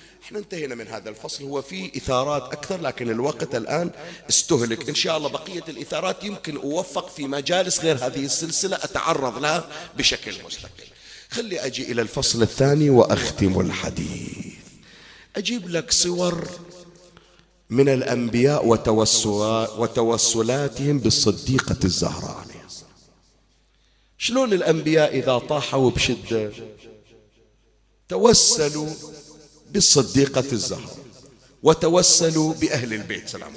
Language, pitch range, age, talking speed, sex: Arabic, 115-165 Hz, 40-59, 100 wpm, male